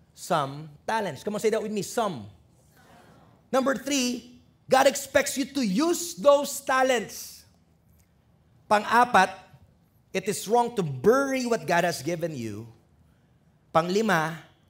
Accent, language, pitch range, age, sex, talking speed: Filipino, English, 170-260 Hz, 30-49, male, 125 wpm